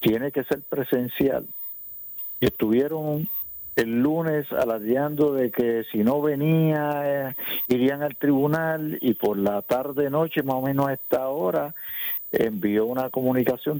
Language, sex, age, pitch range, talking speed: Spanish, male, 50-69, 110-150 Hz, 130 wpm